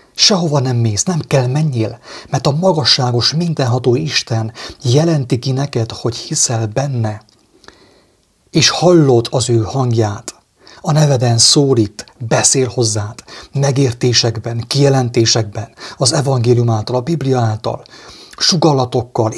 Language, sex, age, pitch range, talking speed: English, male, 30-49, 115-150 Hz, 110 wpm